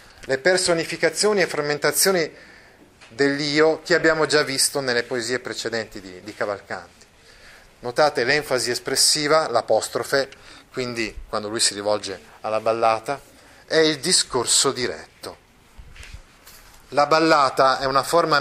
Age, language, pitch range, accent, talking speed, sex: 30-49, Italian, 110-155 Hz, native, 110 wpm, male